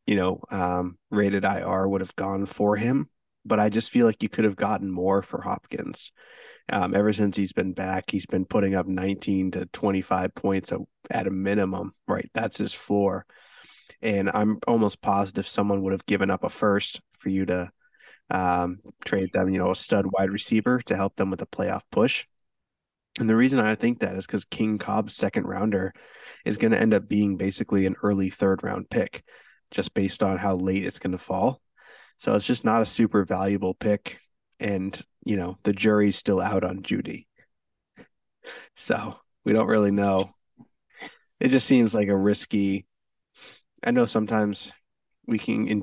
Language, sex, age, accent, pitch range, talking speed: English, male, 20-39, American, 95-105 Hz, 185 wpm